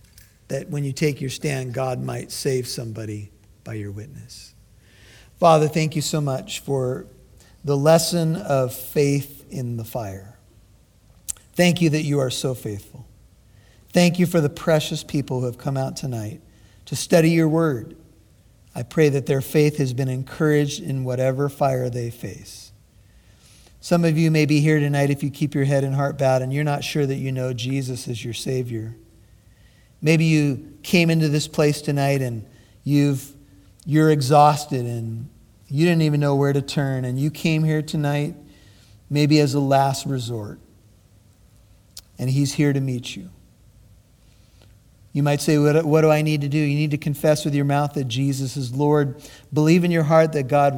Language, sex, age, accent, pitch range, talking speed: English, male, 50-69, American, 120-150 Hz, 175 wpm